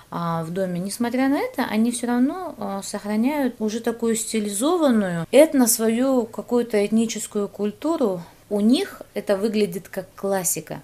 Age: 20-39